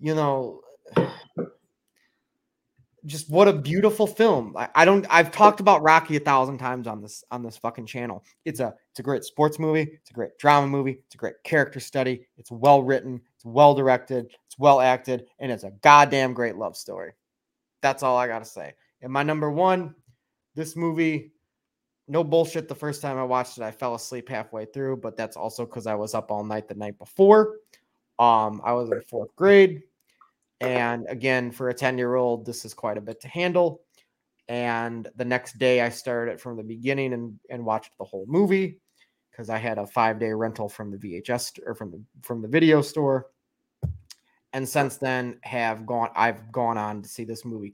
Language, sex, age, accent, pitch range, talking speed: English, male, 20-39, American, 115-150 Hz, 195 wpm